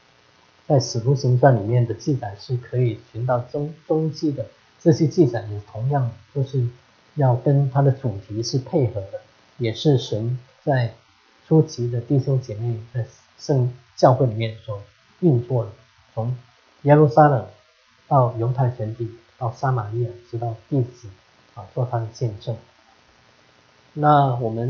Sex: male